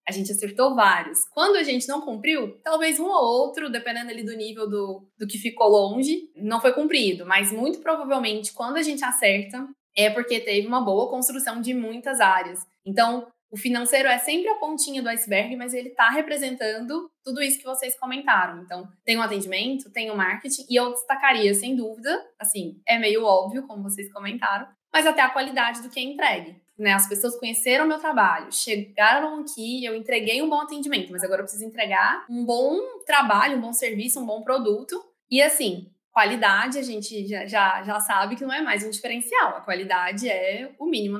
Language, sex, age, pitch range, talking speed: Portuguese, female, 20-39, 205-265 Hz, 195 wpm